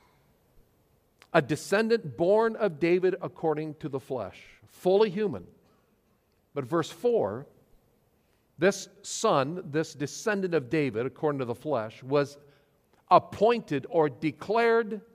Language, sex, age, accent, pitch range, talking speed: English, male, 50-69, American, 125-185 Hz, 110 wpm